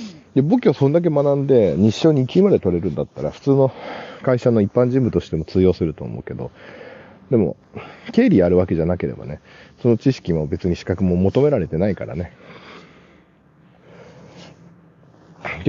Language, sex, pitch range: Japanese, male, 95-145 Hz